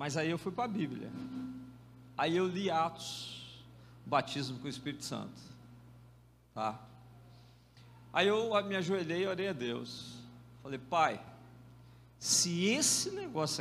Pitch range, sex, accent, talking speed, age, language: 120-170 Hz, male, Brazilian, 130 wpm, 50-69, Portuguese